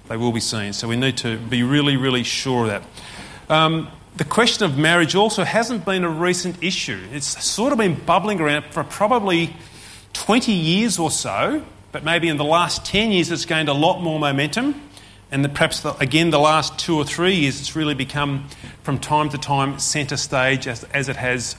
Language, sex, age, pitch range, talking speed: English, male, 30-49, 115-175 Hz, 200 wpm